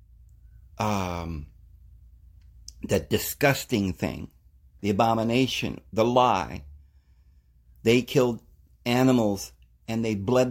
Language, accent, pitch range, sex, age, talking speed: English, American, 75-115 Hz, male, 50-69, 80 wpm